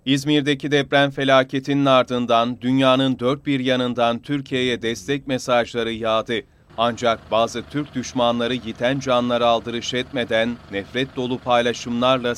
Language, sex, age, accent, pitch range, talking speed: Turkish, male, 40-59, native, 115-135 Hz, 110 wpm